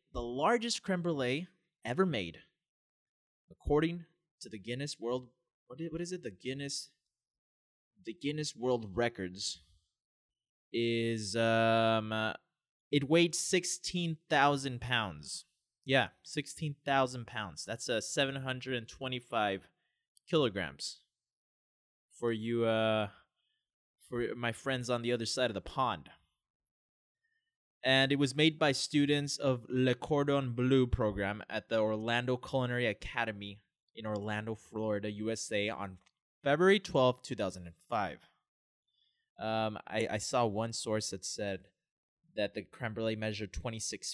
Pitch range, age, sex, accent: 110-150 Hz, 20-39, male, American